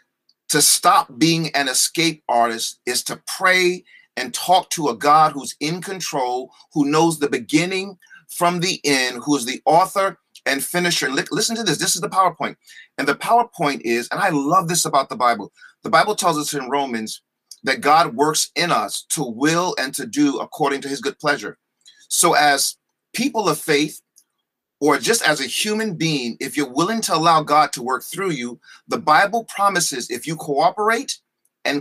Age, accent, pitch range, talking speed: 40-59, American, 135-185 Hz, 185 wpm